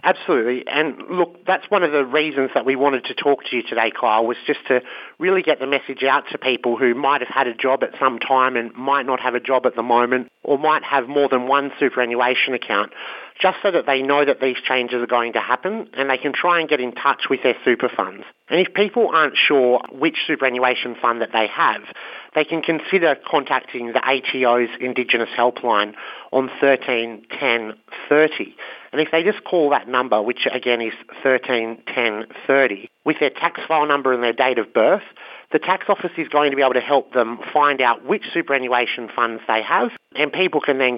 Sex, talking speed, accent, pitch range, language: male, 210 wpm, Australian, 125-150 Hz, English